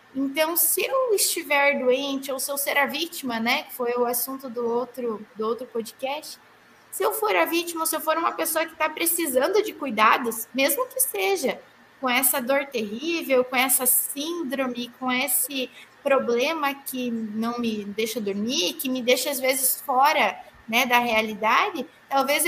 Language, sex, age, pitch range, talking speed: Portuguese, female, 20-39, 255-320 Hz, 170 wpm